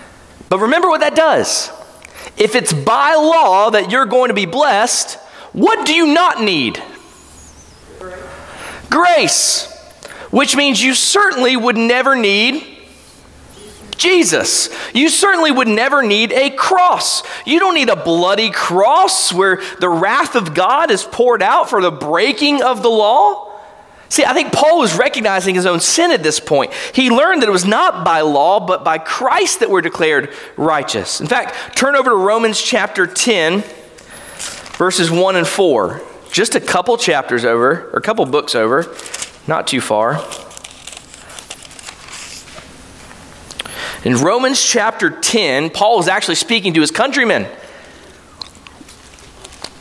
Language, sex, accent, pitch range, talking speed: English, male, American, 190-300 Hz, 145 wpm